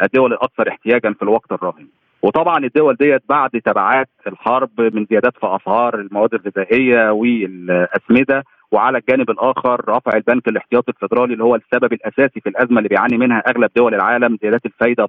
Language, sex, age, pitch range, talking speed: Arabic, male, 40-59, 115-145 Hz, 160 wpm